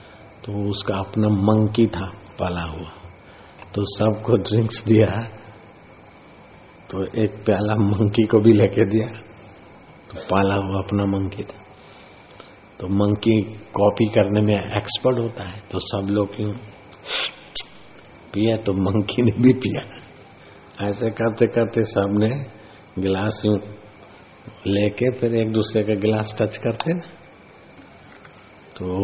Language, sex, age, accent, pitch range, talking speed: Hindi, male, 50-69, native, 100-115 Hz, 120 wpm